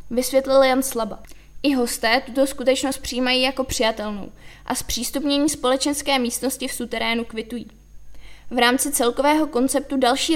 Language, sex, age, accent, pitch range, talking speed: Czech, female, 20-39, native, 235-265 Hz, 125 wpm